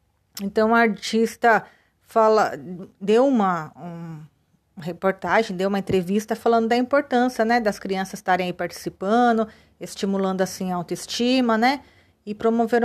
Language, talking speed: Portuguese, 130 wpm